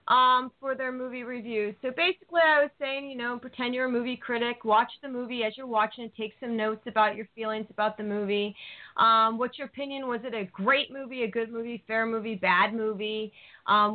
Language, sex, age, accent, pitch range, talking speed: English, female, 30-49, American, 210-255 Hz, 210 wpm